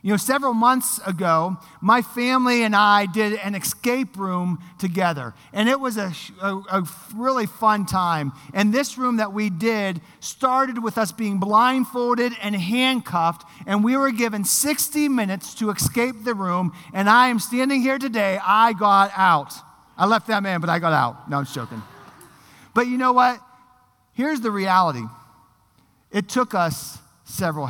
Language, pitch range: English, 170-240 Hz